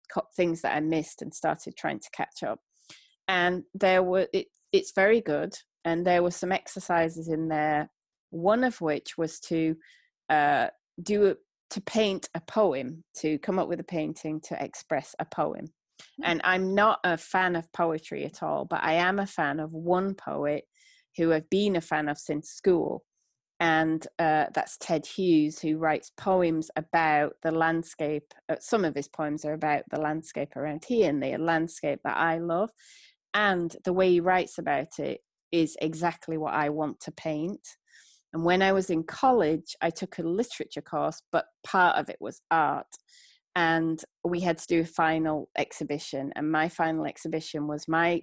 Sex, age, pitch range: female, 30-49, 155-190 Hz